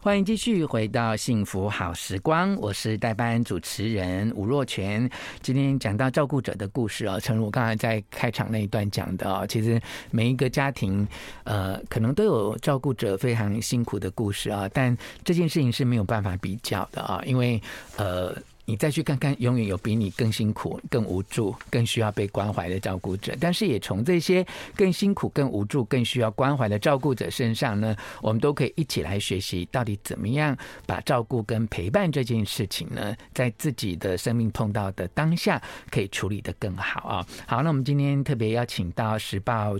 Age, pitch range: 50-69, 100-135 Hz